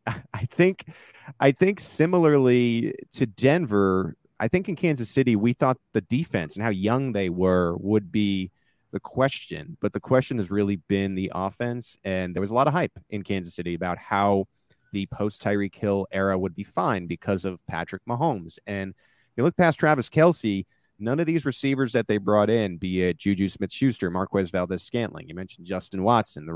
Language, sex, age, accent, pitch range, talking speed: English, male, 30-49, American, 95-120 Hz, 190 wpm